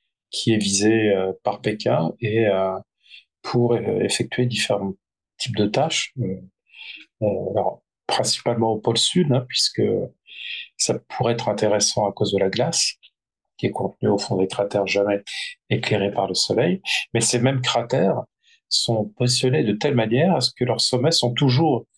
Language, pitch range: French, 100-125 Hz